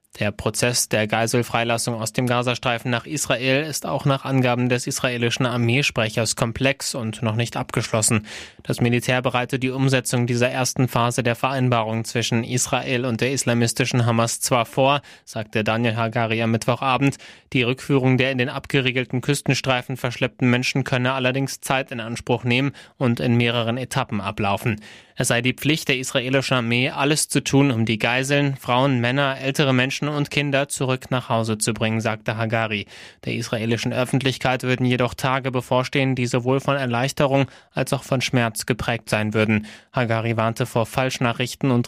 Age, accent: 20-39, German